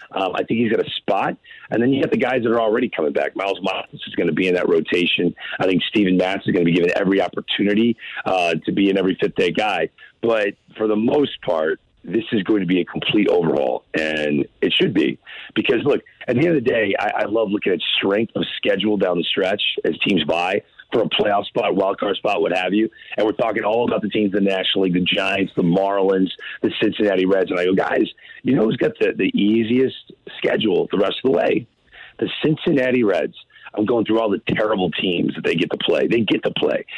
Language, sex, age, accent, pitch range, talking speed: English, male, 40-59, American, 95-125 Hz, 235 wpm